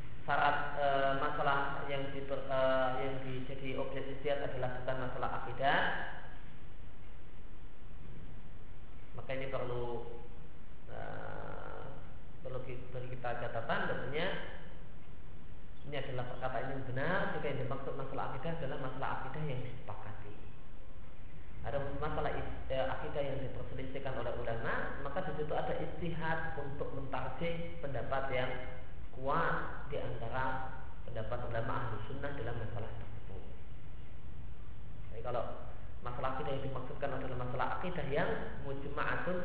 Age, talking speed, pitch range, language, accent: 30-49, 110 wpm, 115-140 Hz, Indonesian, native